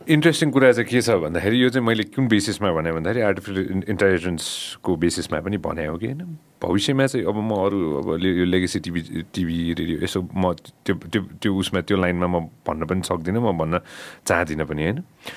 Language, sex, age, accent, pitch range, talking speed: English, male, 30-49, Indian, 85-115 Hz, 40 wpm